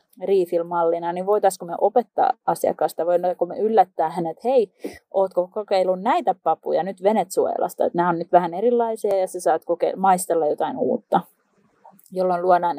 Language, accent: Finnish, native